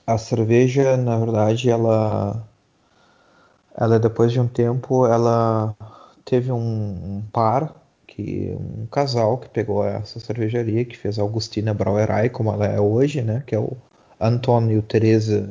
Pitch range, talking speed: 105-120 Hz, 145 wpm